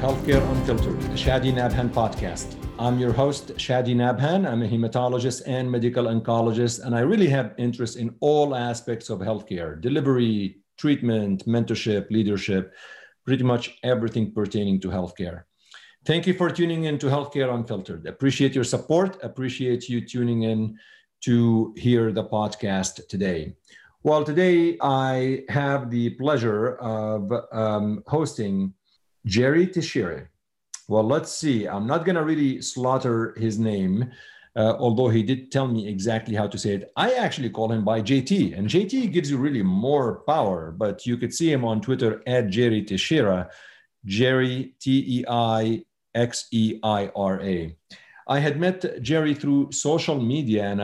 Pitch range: 110-135 Hz